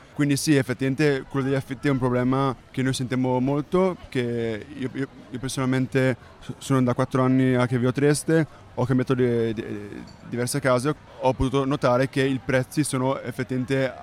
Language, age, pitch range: Italian, 20-39, 125-135 Hz